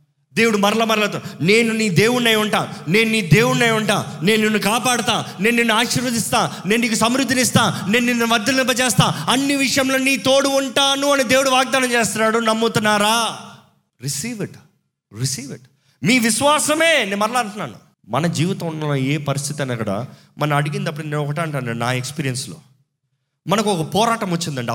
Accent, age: native, 30-49